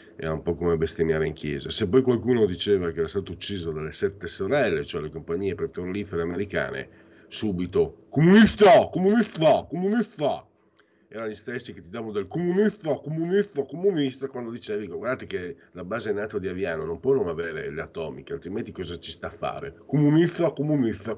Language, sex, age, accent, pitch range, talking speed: Italian, male, 50-69, native, 95-135 Hz, 195 wpm